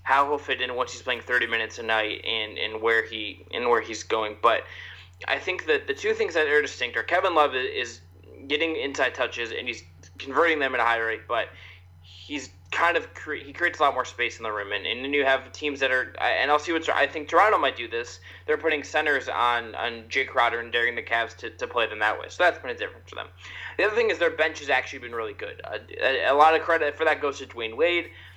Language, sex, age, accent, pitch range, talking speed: English, male, 20-39, American, 100-145 Hz, 260 wpm